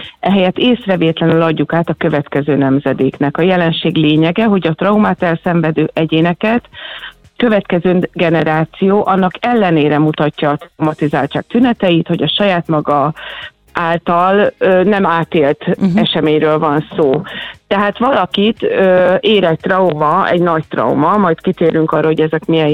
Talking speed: 130 wpm